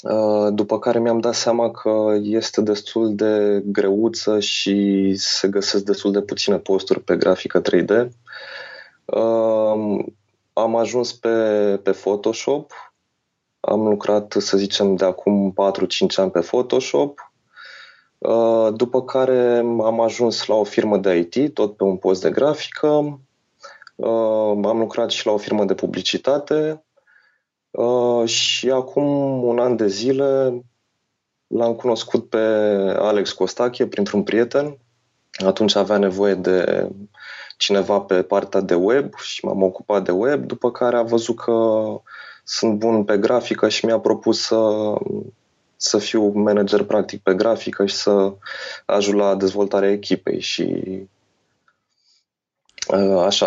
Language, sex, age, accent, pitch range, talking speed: Romanian, male, 20-39, native, 100-120 Hz, 130 wpm